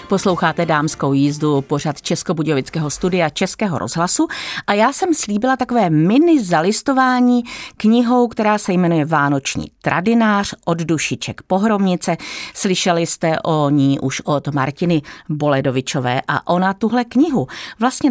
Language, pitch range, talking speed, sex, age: Czech, 150-215 Hz, 125 wpm, female, 40-59